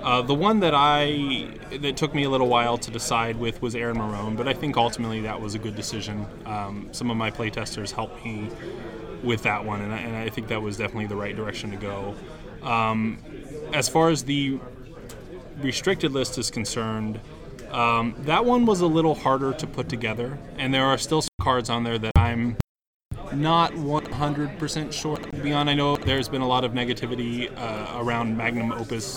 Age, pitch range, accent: 20-39, 105-125 Hz, American